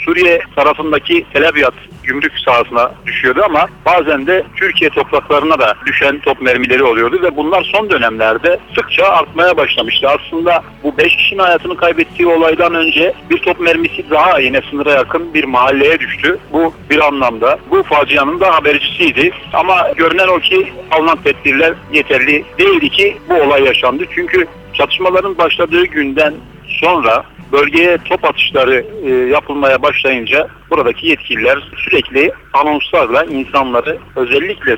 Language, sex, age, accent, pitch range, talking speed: Turkish, male, 60-79, native, 145-200 Hz, 135 wpm